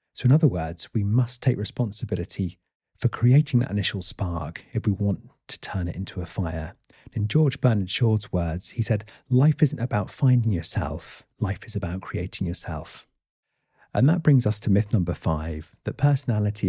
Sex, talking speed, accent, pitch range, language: male, 175 wpm, British, 95-125 Hz, English